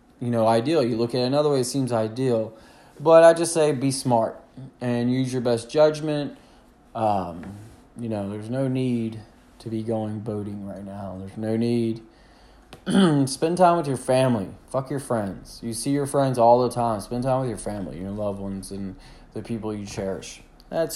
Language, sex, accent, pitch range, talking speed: English, male, American, 110-130 Hz, 190 wpm